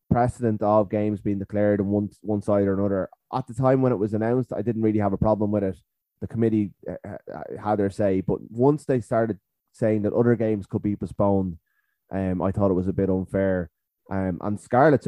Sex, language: male, English